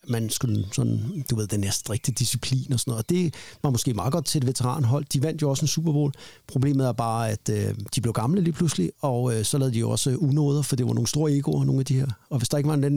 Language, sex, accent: Danish, male, native